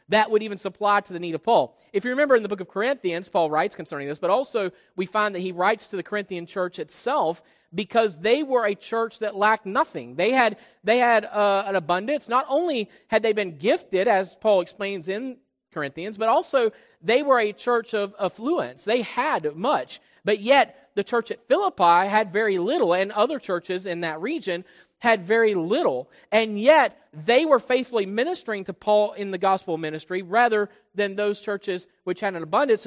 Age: 40-59